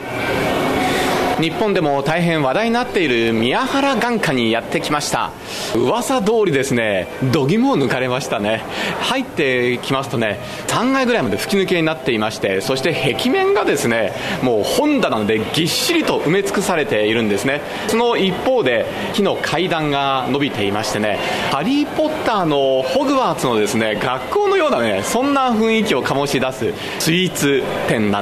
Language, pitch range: Japanese, 125-210 Hz